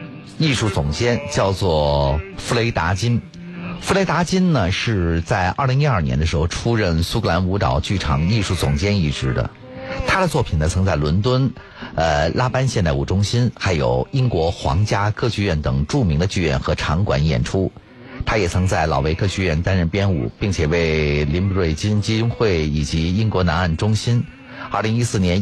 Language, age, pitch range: Chinese, 50-69, 80-115 Hz